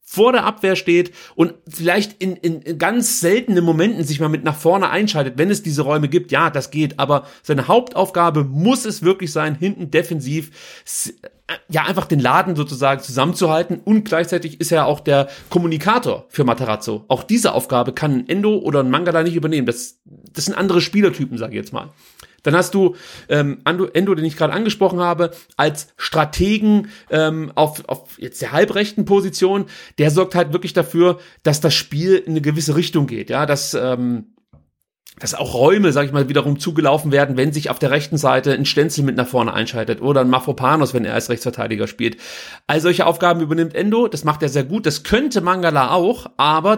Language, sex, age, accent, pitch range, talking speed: German, male, 30-49, German, 145-185 Hz, 190 wpm